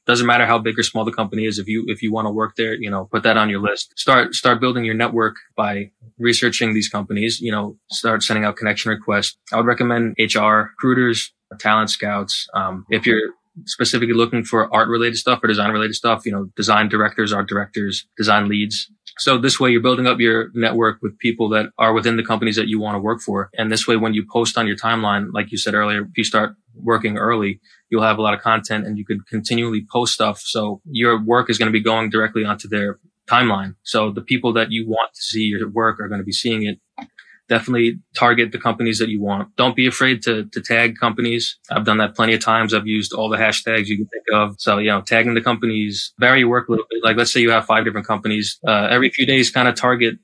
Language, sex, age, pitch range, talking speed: English, male, 20-39, 105-115 Hz, 240 wpm